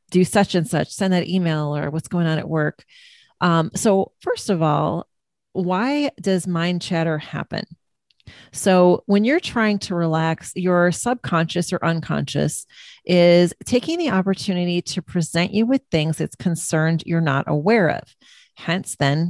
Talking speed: 155 wpm